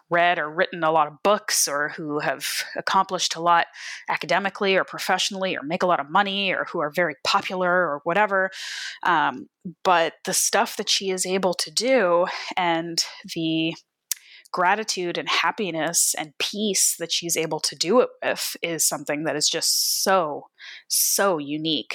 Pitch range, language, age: 155-190 Hz, English, 20-39